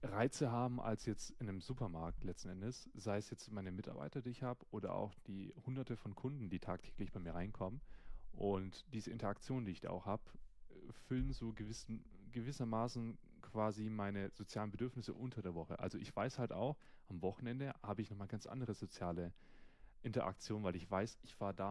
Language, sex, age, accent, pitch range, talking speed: German, male, 30-49, German, 105-130 Hz, 185 wpm